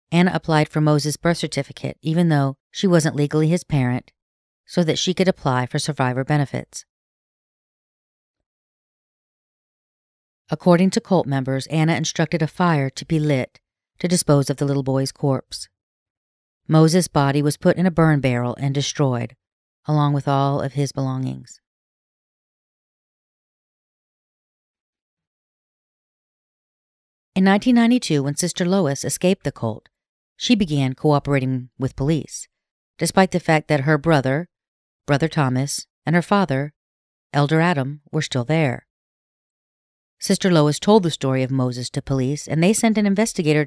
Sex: female